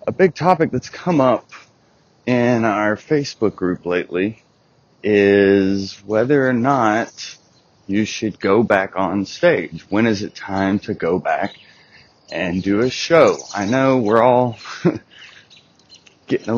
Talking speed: 140 wpm